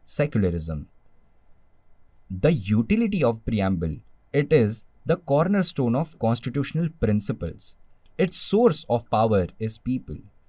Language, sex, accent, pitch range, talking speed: Hindi, male, native, 100-160 Hz, 105 wpm